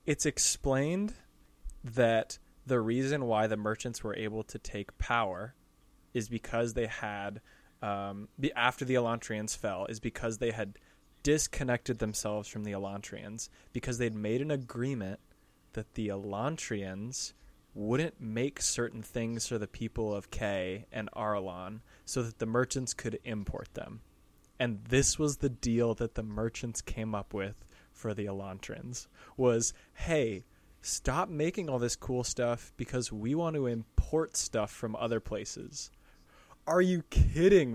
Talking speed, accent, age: 145 wpm, American, 20-39